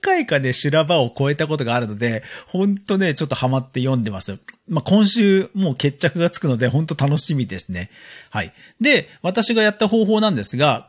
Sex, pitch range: male, 125-205 Hz